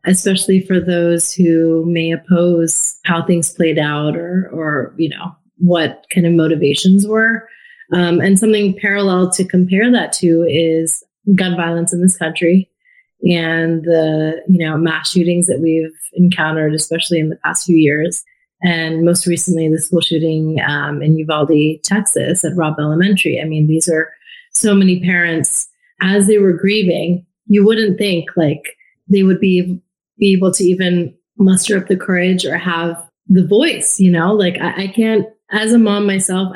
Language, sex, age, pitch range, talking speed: English, female, 30-49, 170-205 Hz, 165 wpm